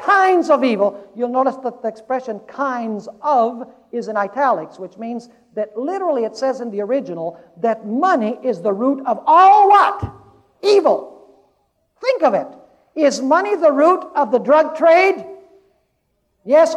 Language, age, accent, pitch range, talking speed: English, 60-79, American, 215-345 Hz, 155 wpm